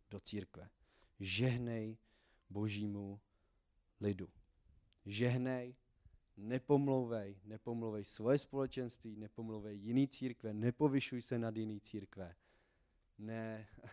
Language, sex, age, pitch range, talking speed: Czech, male, 30-49, 100-130 Hz, 80 wpm